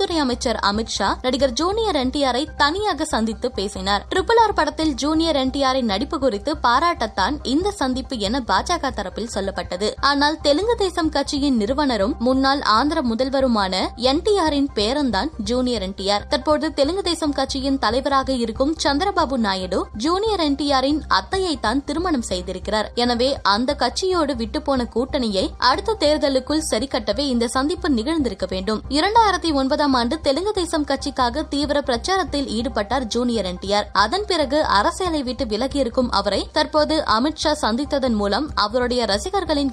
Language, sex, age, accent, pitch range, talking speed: Tamil, female, 20-39, native, 235-310 Hz, 130 wpm